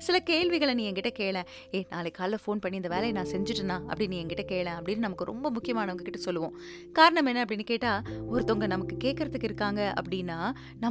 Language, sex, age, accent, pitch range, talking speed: Tamil, female, 20-39, native, 180-260 Hz, 180 wpm